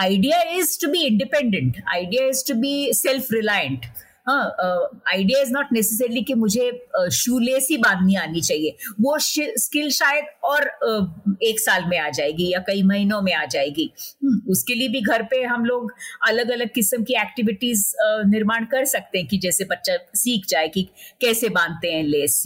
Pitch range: 195-255 Hz